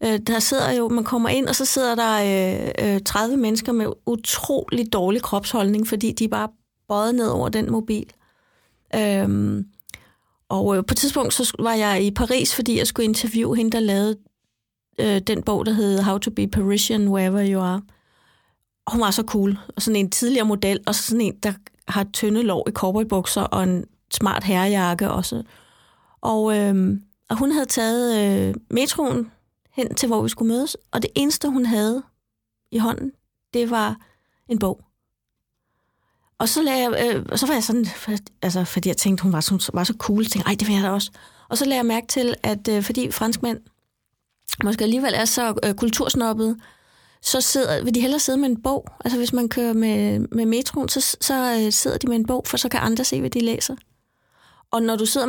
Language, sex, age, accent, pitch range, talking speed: Danish, female, 30-49, native, 200-240 Hz, 200 wpm